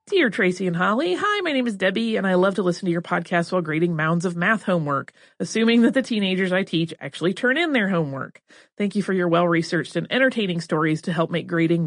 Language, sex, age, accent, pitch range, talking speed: English, female, 30-49, American, 170-220 Hz, 235 wpm